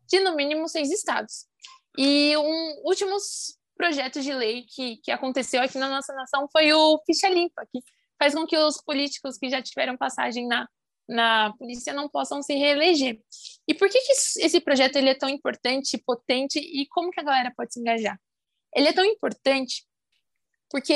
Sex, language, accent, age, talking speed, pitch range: female, Portuguese, Brazilian, 20-39, 180 wpm, 250-335 Hz